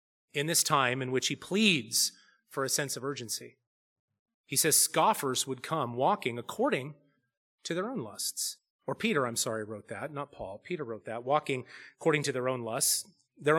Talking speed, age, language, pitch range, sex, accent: 180 wpm, 30-49, English, 140-210 Hz, male, American